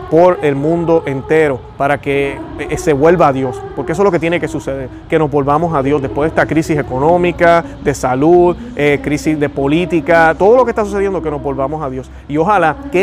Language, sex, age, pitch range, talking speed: Spanish, male, 30-49, 145-195 Hz, 215 wpm